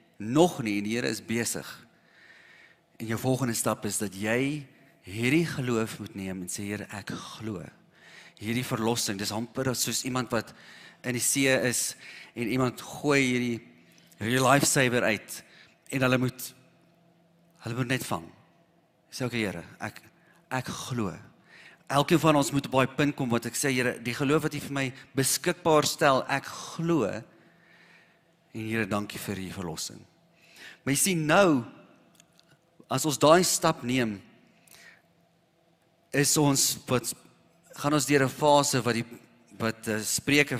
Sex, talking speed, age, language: male, 150 wpm, 40-59, English